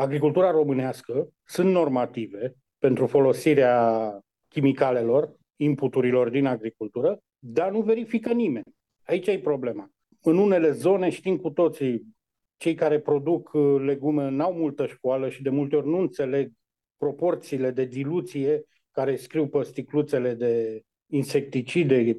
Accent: native